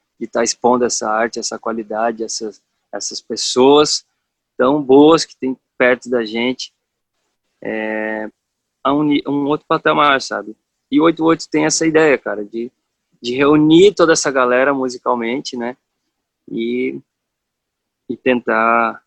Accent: Brazilian